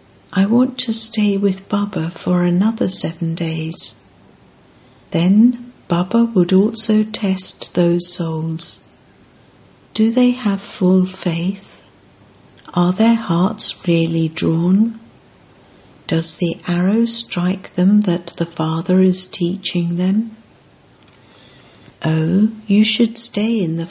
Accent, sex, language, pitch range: British, female, English, 170-205 Hz